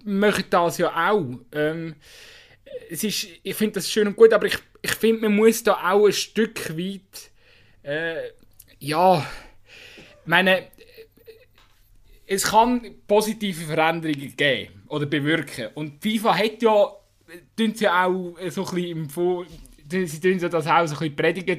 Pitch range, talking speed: 150-195 Hz, 150 wpm